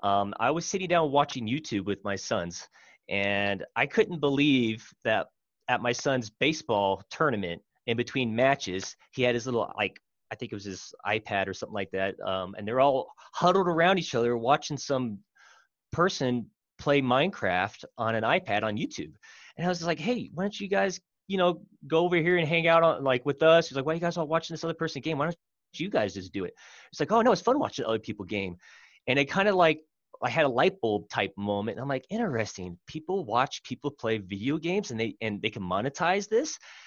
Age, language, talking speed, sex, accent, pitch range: 30-49, English, 220 wpm, male, American, 100-165 Hz